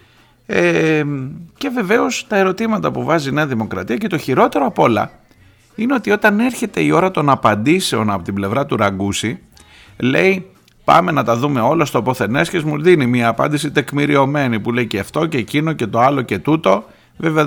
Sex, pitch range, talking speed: male, 105-155 Hz, 180 wpm